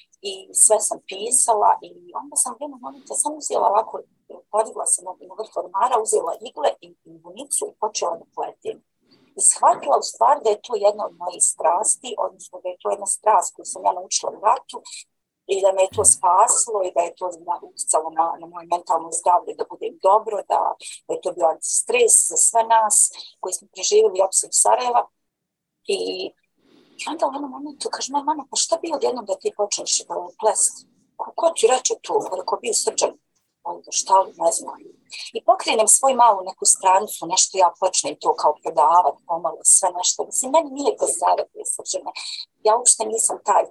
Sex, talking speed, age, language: female, 190 wpm, 40-59, Croatian